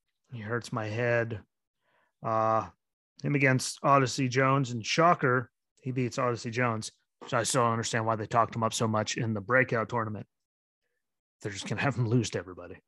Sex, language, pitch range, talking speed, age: male, English, 110-135 Hz, 185 wpm, 30-49